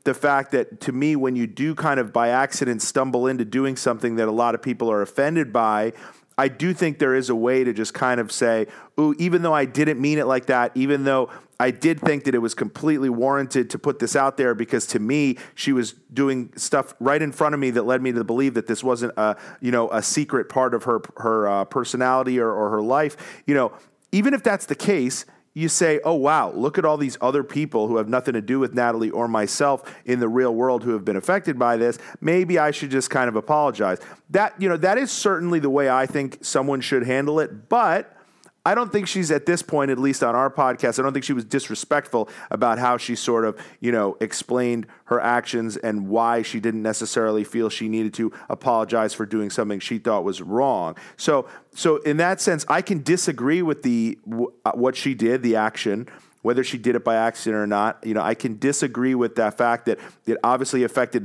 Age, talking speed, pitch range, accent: 30-49, 230 wpm, 115-140 Hz, American